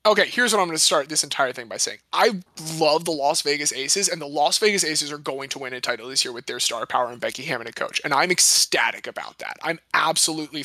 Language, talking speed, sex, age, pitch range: English, 265 wpm, male, 20-39, 145-180 Hz